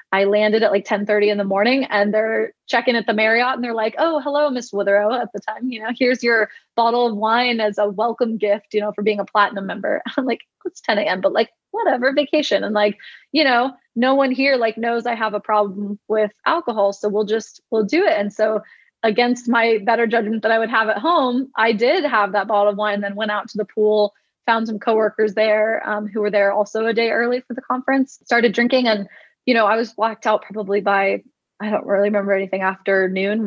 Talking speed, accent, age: 235 wpm, American, 20-39